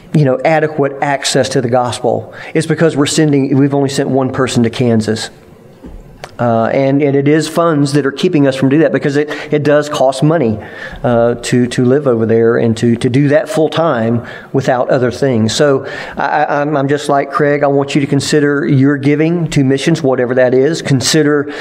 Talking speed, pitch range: 200 wpm, 130-150 Hz